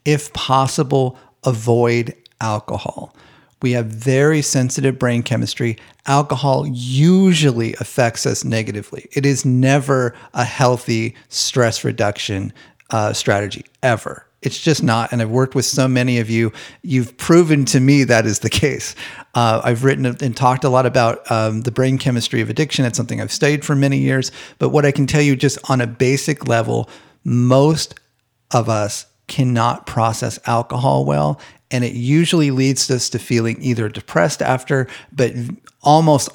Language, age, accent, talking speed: English, 40-59, American, 155 wpm